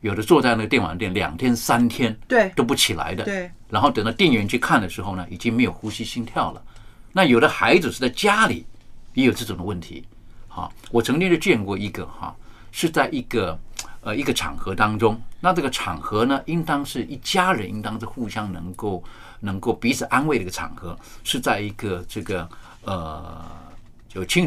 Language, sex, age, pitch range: Chinese, male, 50-69, 100-135 Hz